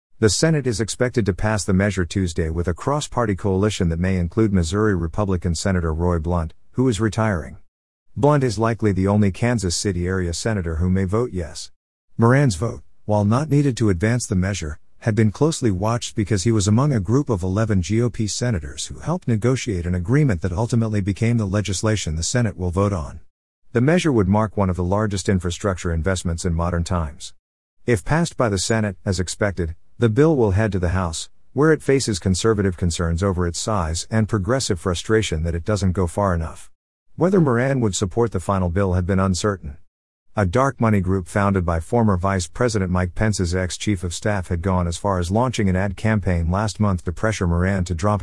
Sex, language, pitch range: male, English, 90-115 Hz